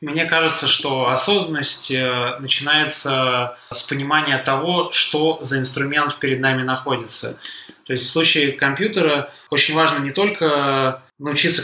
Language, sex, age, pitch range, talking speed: Russian, male, 20-39, 130-145 Hz, 125 wpm